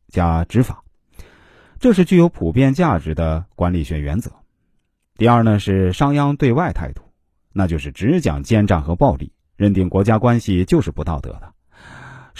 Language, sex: Chinese, male